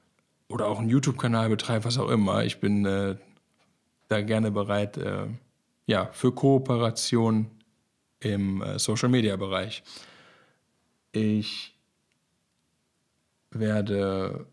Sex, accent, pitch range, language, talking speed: male, German, 105-120 Hz, German, 105 wpm